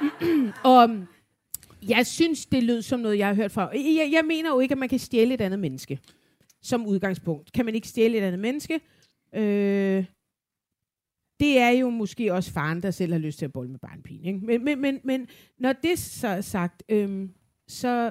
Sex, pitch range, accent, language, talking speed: female, 190-265 Hz, native, Danish, 195 wpm